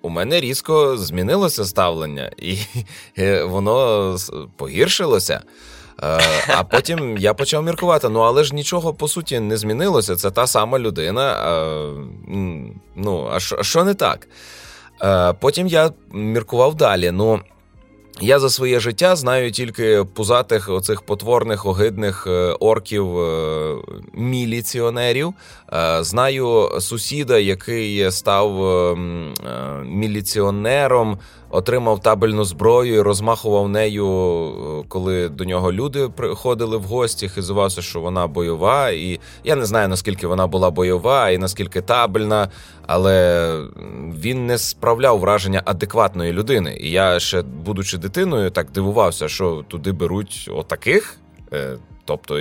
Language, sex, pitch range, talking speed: Ukrainian, male, 90-115 Hz, 115 wpm